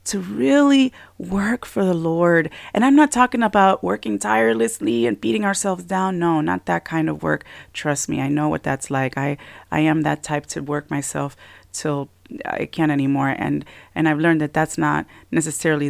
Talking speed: 190 wpm